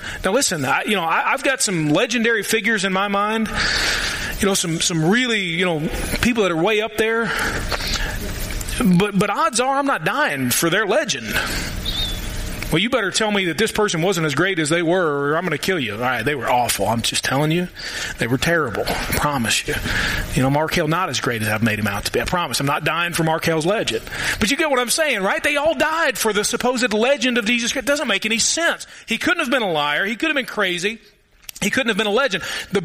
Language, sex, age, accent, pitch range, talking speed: English, male, 30-49, American, 165-235 Hz, 245 wpm